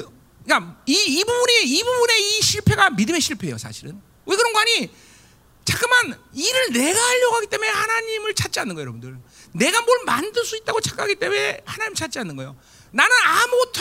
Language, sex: Korean, male